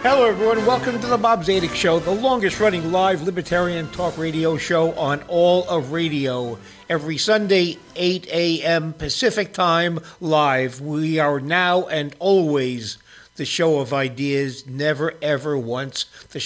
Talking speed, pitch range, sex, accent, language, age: 140 wpm, 135-175 Hz, male, American, English, 60-79